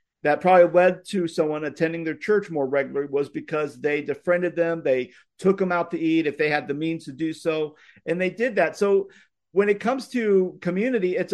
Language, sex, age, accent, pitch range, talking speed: English, male, 50-69, American, 150-195 Hz, 210 wpm